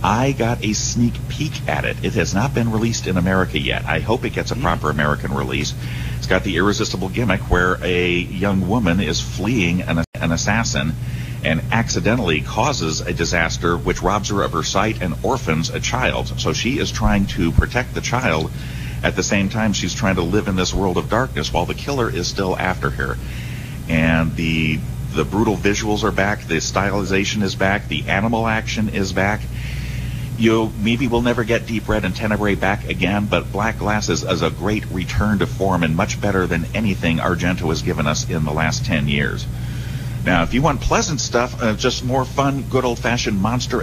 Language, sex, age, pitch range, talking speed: English, male, 50-69, 90-115 Hz, 195 wpm